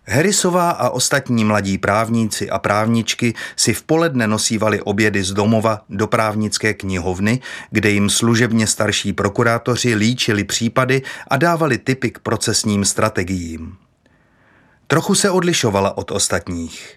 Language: Czech